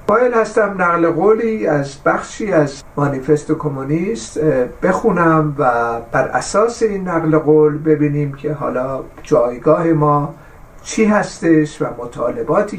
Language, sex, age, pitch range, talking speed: Persian, male, 50-69, 150-200 Hz, 115 wpm